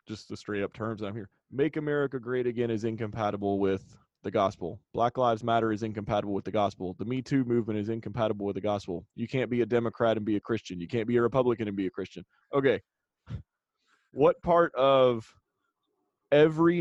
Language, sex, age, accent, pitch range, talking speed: English, male, 30-49, American, 110-140 Hz, 200 wpm